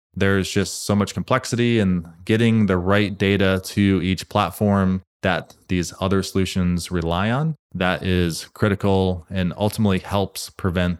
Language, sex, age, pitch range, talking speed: English, male, 20-39, 90-105 Hz, 140 wpm